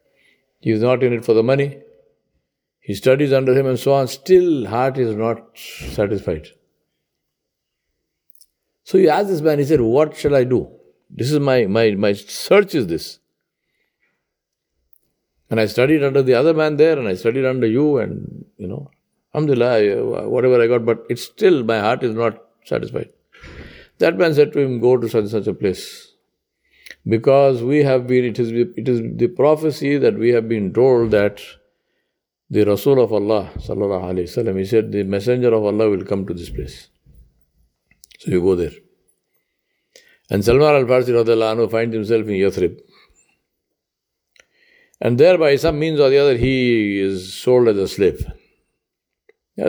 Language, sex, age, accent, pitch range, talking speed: English, male, 50-69, Indian, 110-145 Hz, 165 wpm